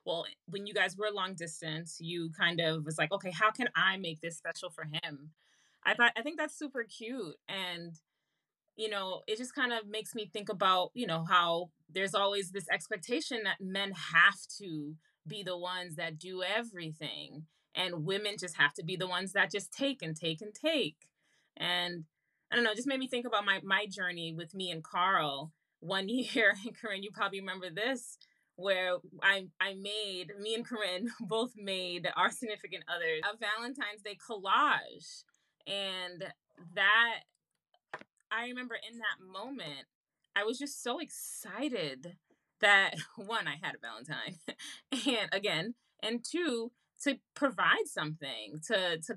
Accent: American